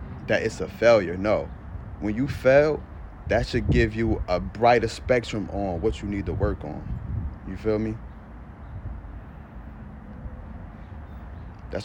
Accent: American